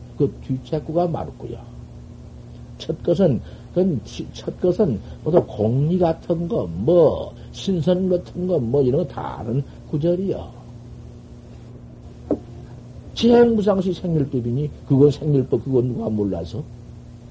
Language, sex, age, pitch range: Korean, male, 60-79, 115-175 Hz